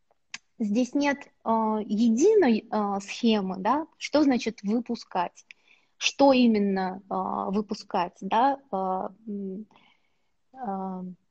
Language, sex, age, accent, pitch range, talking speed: Russian, female, 20-39, native, 195-245 Hz, 90 wpm